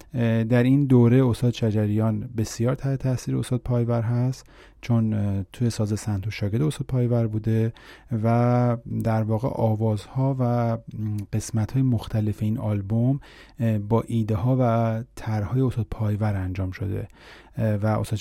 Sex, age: male, 30-49